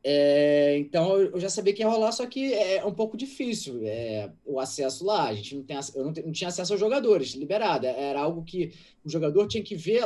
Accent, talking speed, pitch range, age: Brazilian, 235 wpm, 135-195 Hz, 20-39